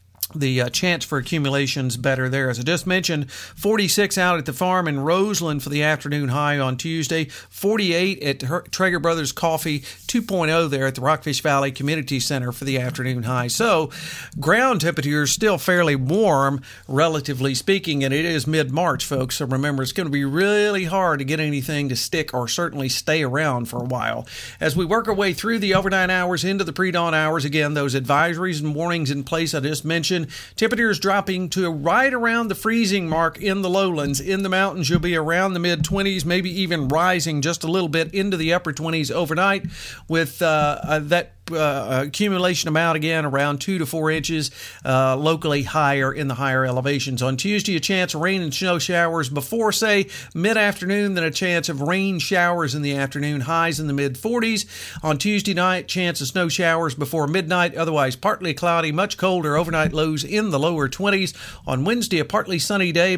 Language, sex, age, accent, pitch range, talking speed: English, male, 50-69, American, 145-180 Hz, 190 wpm